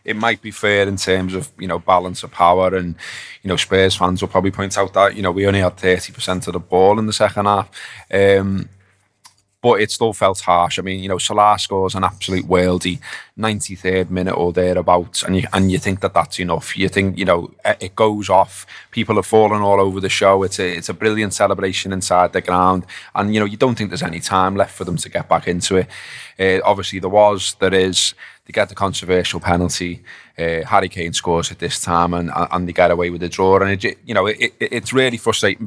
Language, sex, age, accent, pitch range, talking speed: English, male, 20-39, British, 90-100 Hz, 230 wpm